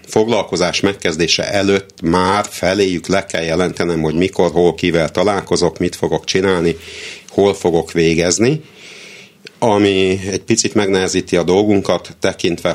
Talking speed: 120 wpm